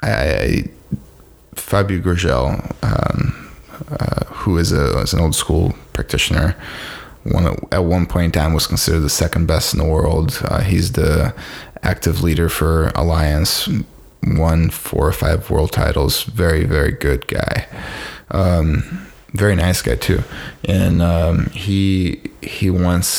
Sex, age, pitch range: male, 20-39, 80-95 Hz